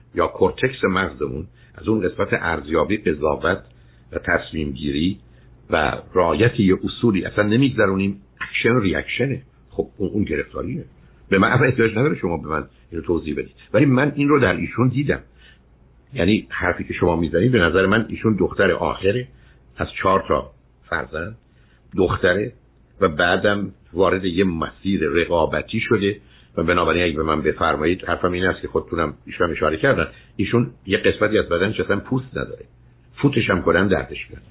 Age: 60-79